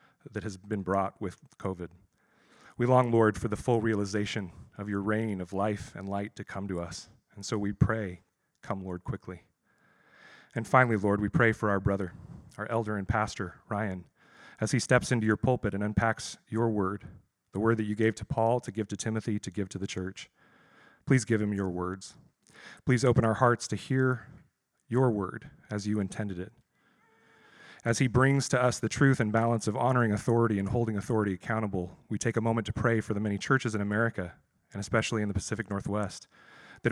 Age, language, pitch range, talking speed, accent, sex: 40-59, English, 100-115 Hz, 200 wpm, American, male